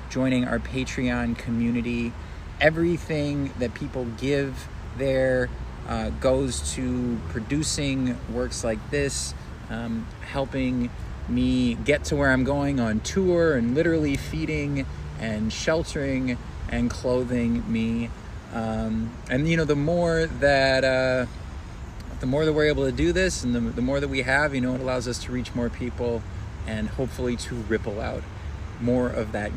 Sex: male